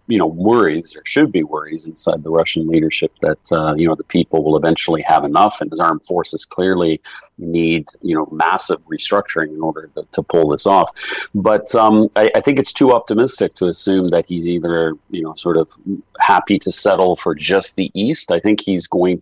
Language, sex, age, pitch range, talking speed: English, male, 40-59, 80-95 Hz, 205 wpm